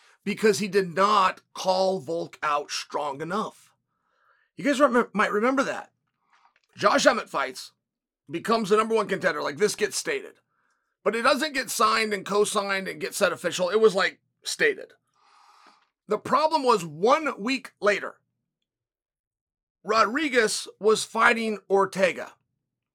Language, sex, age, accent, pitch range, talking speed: English, male, 30-49, American, 185-255 Hz, 135 wpm